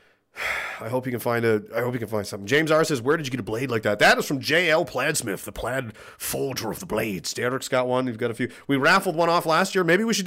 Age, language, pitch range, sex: 30-49, English, 110-150 Hz, male